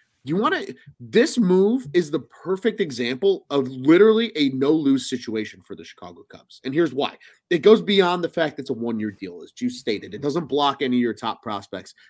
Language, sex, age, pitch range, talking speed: English, male, 30-49, 115-165 Hz, 215 wpm